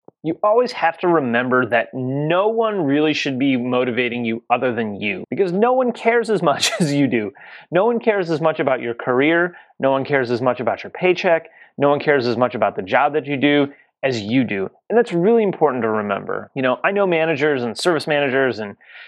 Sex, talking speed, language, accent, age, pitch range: male, 220 wpm, English, American, 30-49, 130-190 Hz